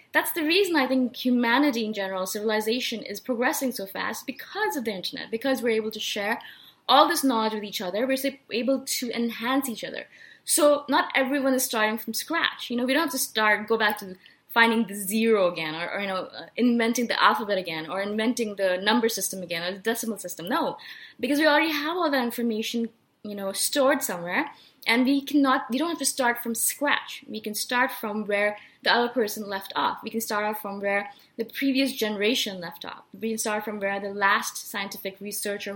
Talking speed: 210 wpm